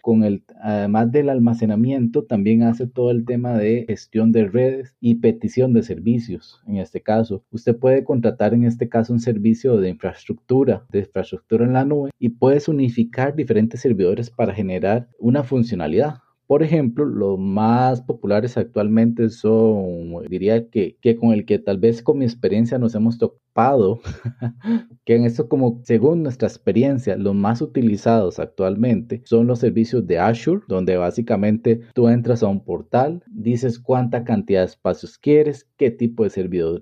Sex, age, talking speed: male, 30-49, 155 wpm